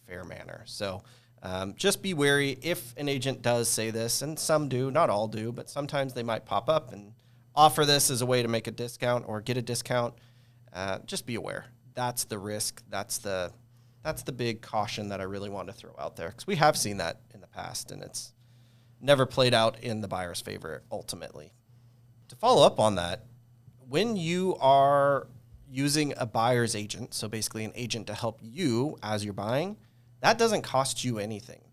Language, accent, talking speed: English, American, 195 wpm